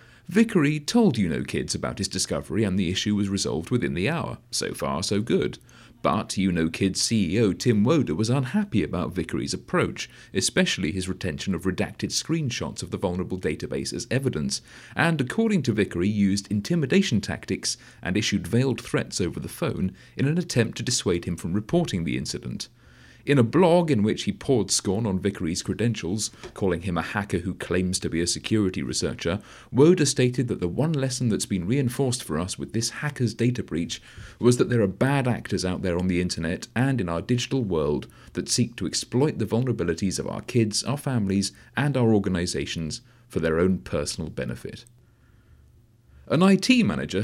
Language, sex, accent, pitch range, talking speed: English, male, British, 95-130 Hz, 180 wpm